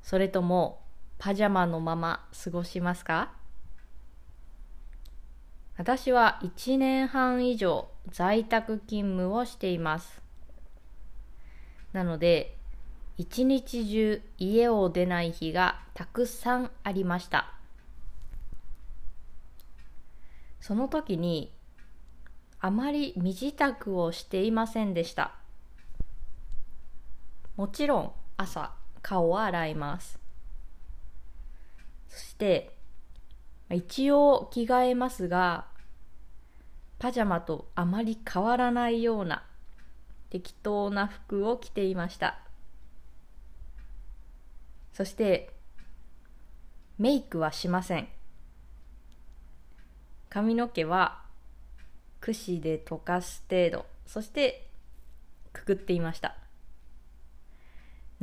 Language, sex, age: Japanese, female, 20-39